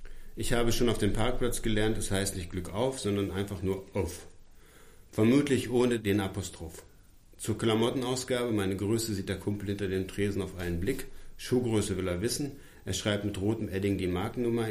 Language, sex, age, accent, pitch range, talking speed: German, male, 50-69, German, 95-115 Hz, 185 wpm